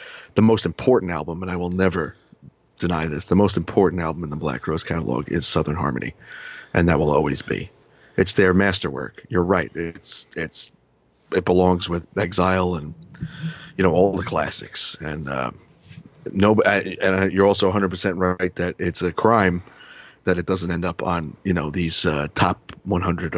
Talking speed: 175 wpm